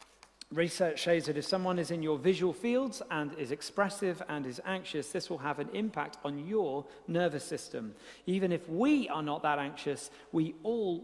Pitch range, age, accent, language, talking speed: 155-215 Hz, 40-59, British, English, 185 wpm